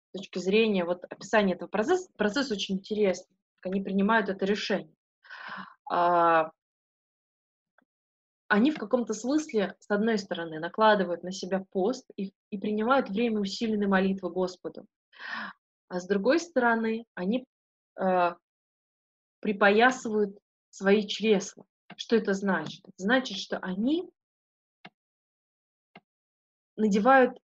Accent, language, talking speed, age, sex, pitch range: native, Russian, 105 wpm, 20-39, female, 185-225 Hz